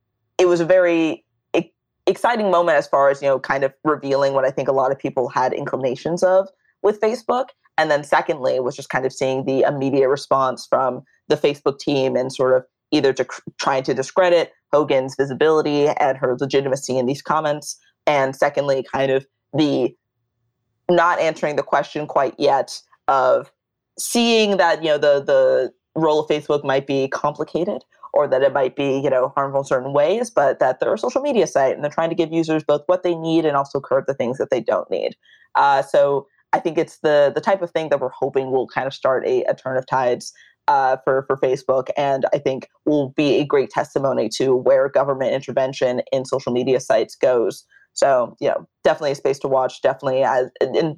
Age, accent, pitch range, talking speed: 20-39, American, 135-170 Hz, 200 wpm